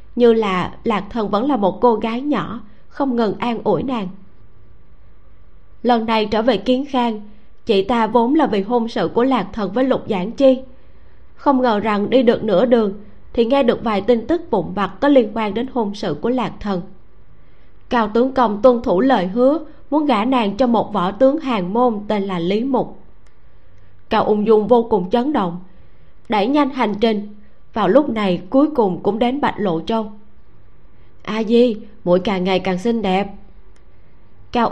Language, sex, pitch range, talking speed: Vietnamese, female, 200-255 Hz, 190 wpm